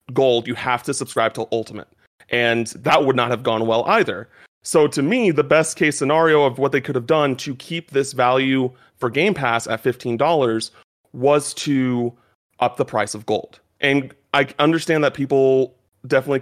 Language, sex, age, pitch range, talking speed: English, male, 30-49, 120-150 Hz, 185 wpm